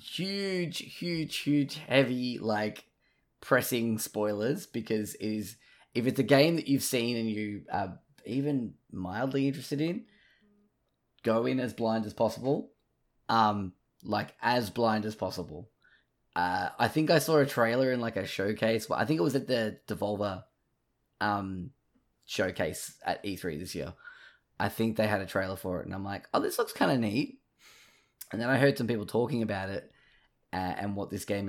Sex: male